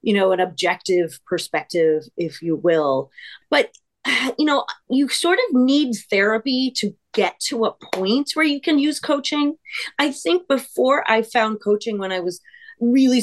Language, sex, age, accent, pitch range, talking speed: English, female, 30-49, American, 195-260 Hz, 165 wpm